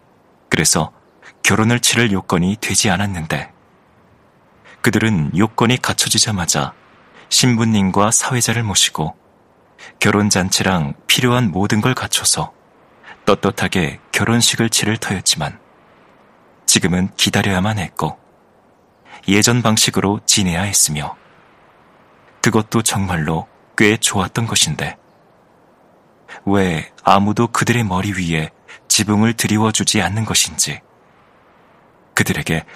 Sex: male